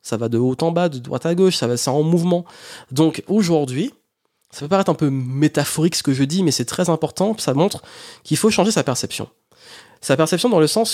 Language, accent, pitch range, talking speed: French, French, 125-175 Hz, 235 wpm